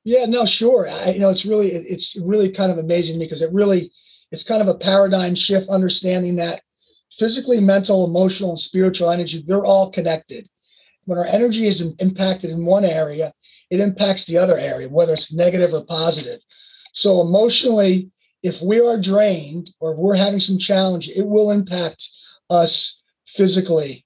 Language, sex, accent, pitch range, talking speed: English, male, American, 170-205 Hz, 165 wpm